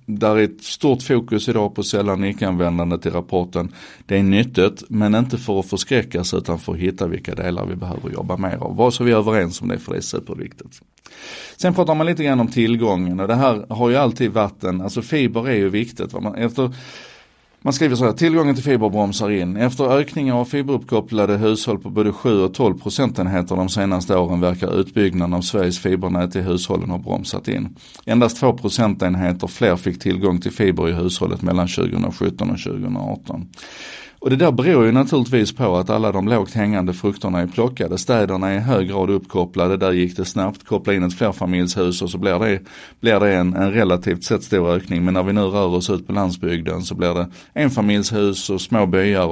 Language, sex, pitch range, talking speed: Swedish, male, 90-115 Hz, 205 wpm